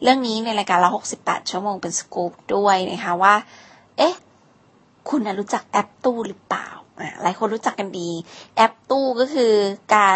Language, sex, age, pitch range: Thai, female, 20-39, 195-230 Hz